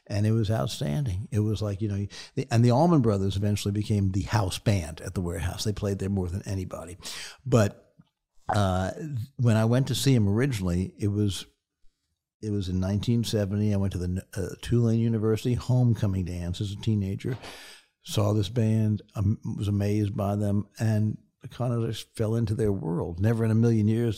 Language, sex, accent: English, male, American